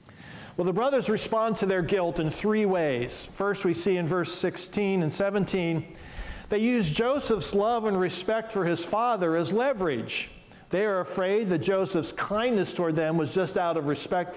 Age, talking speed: 50-69, 175 wpm